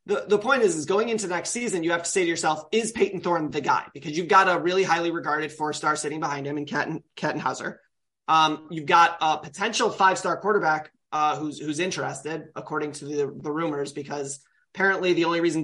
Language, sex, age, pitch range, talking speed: English, male, 30-49, 150-190 Hz, 210 wpm